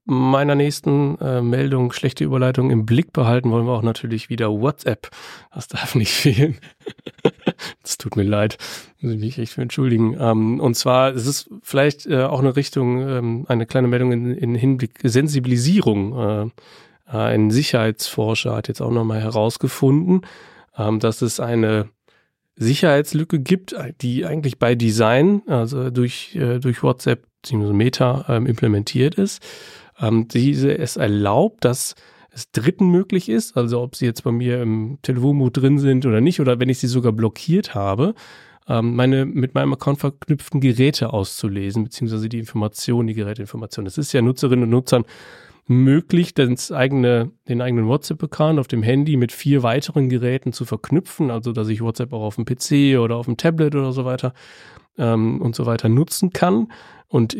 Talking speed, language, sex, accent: 160 wpm, German, male, German